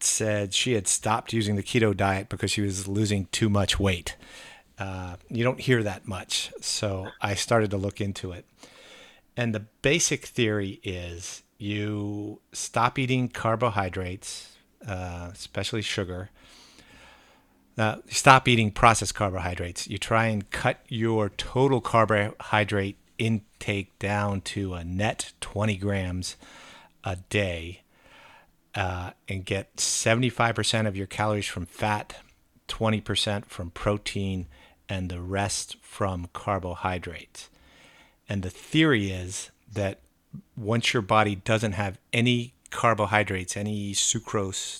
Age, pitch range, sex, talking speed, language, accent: 50-69, 95-110 Hz, male, 125 wpm, English, American